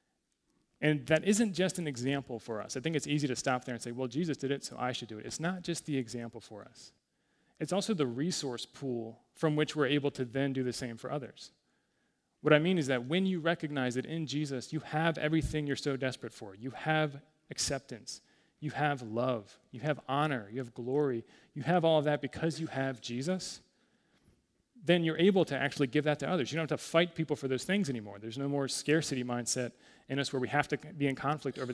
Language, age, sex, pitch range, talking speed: English, 30-49, male, 125-155 Hz, 230 wpm